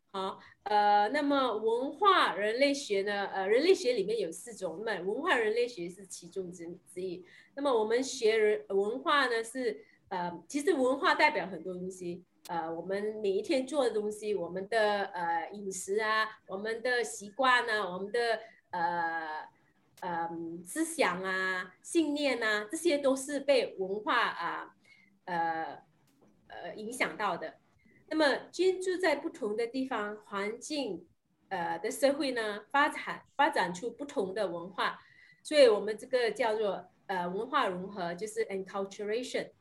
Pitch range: 190-280 Hz